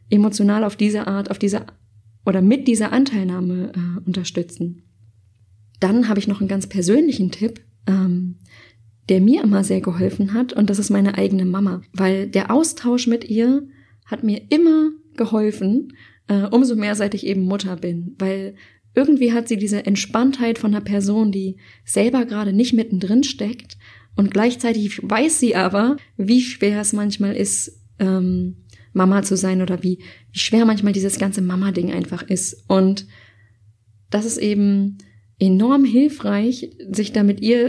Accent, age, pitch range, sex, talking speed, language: German, 20-39, 190-230 Hz, female, 160 wpm, German